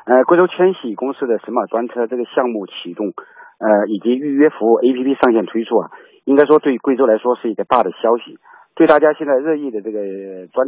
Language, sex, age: Chinese, male, 50-69